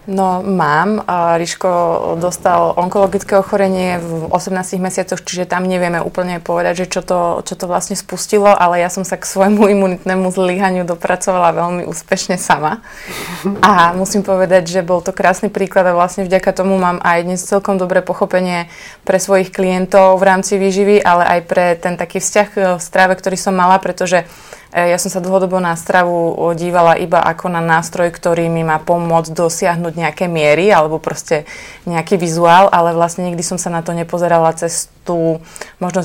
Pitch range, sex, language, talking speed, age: 170-190 Hz, female, Slovak, 170 wpm, 20-39